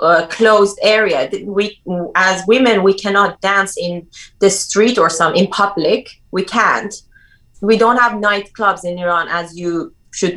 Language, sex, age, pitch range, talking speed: English, female, 30-49, 175-215 Hz, 160 wpm